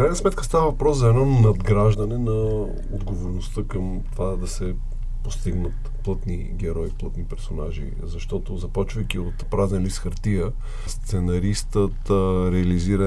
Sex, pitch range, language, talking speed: male, 95-115 Hz, Bulgarian, 120 wpm